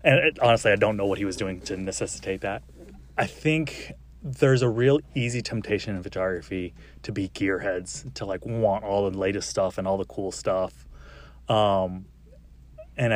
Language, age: English, 30-49